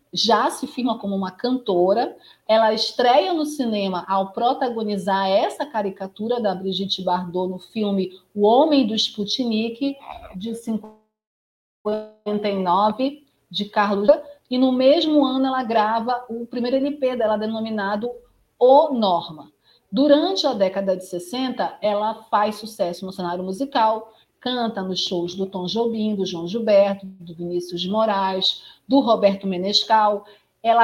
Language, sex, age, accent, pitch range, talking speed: Portuguese, female, 40-59, Brazilian, 200-250 Hz, 130 wpm